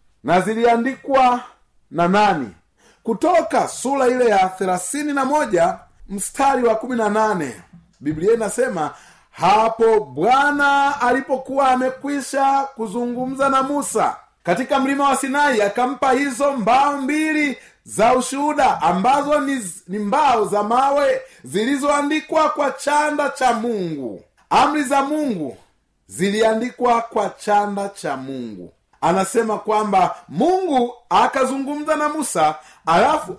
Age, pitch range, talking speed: 30-49, 225-290 Hz, 100 wpm